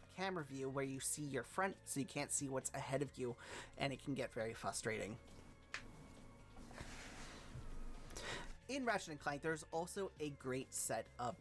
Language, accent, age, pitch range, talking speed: English, American, 30-49, 130-160 Hz, 165 wpm